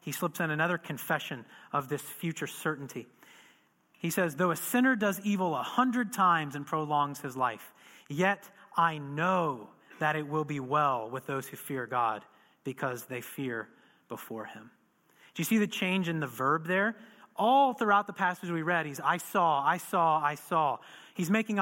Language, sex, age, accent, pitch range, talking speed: English, male, 30-49, American, 150-215 Hz, 180 wpm